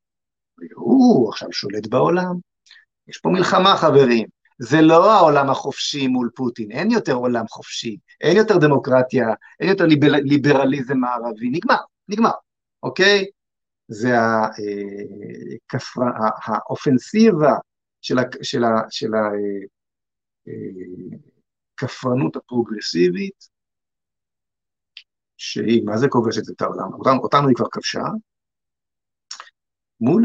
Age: 50-69